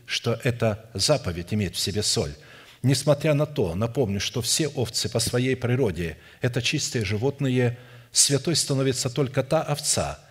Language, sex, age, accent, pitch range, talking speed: Russian, male, 60-79, native, 115-140 Hz, 145 wpm